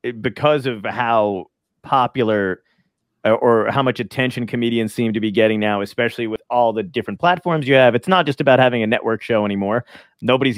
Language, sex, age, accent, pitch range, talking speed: English, male, 30-49, American, 105-130 Hz, 180 wpm